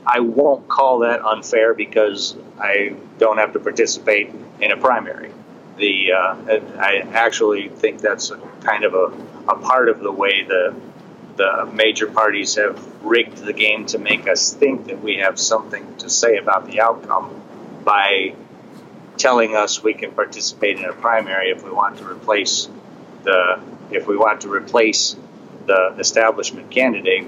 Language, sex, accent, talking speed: English, male, American, 160 wpm